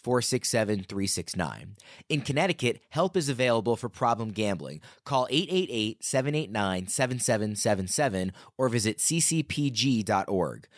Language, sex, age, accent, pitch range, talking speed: English, male, 30-49, American, 105-145 Hz, 105 wpm